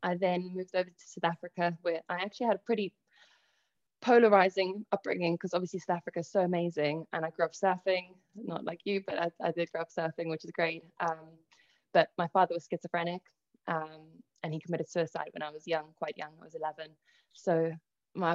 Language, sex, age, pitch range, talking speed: English, female, 20-39, 160-185 Hz, 205 wpm